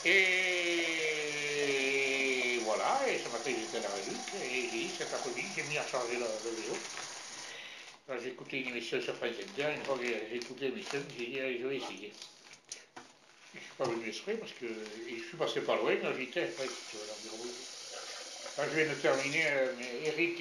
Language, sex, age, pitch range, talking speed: French, male, 60-79, 130-175 Hz, 195 wpm